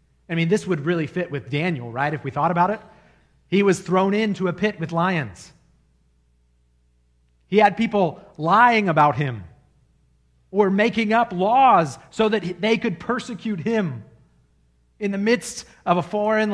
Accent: American